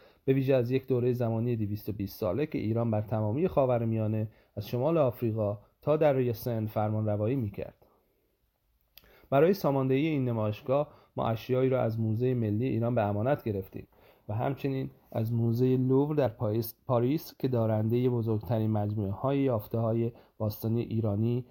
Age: 40-59